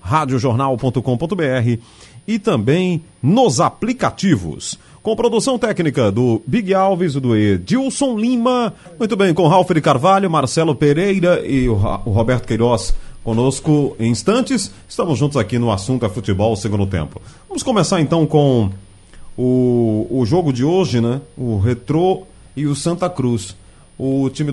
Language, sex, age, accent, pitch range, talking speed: Portuguese, male, 30-49, Brazilian, 105-155 Hz, 140 wpm